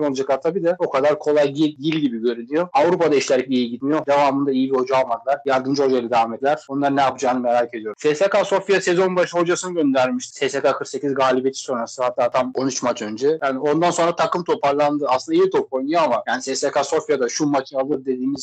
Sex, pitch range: male, 130-150 Hz